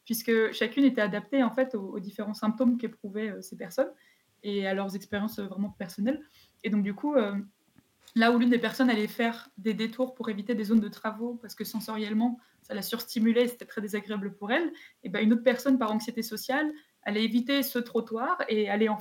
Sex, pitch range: female, 205-240 Hz